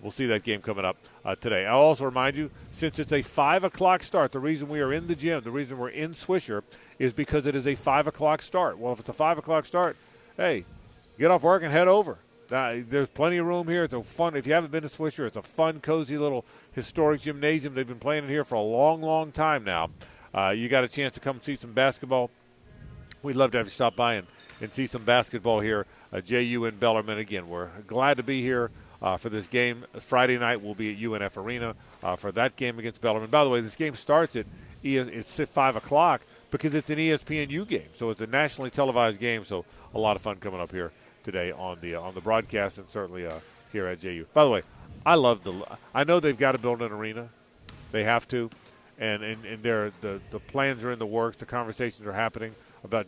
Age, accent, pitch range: 50-69, American, 110-145 Hz